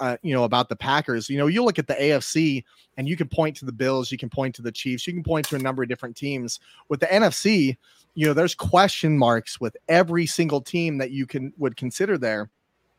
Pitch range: 130-170 Hz